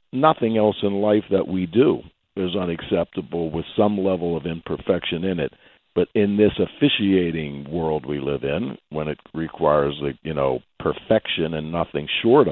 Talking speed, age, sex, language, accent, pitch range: 165 wpm, 60-79, male, English, American, 85-105 Hz